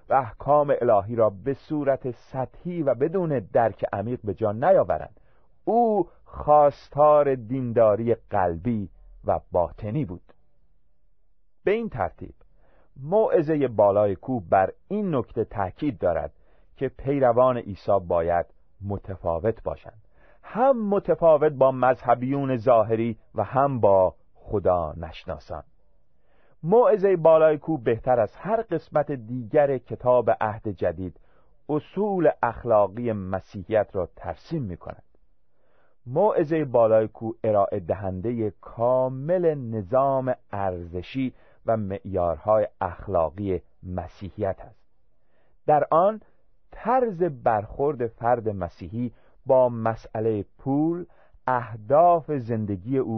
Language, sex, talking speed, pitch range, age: Persian, male, 100 wpm, 105-145 Hz, 40-59